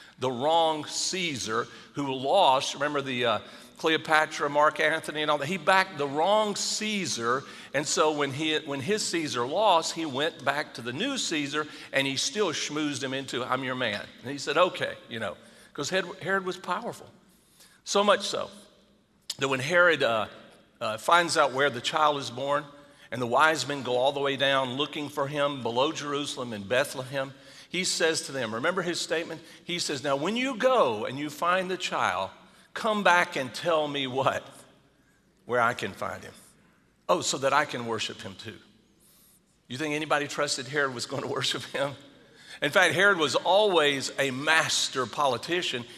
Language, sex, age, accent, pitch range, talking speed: English, male, 50-69, American, 135-175 Hz, 180 wpm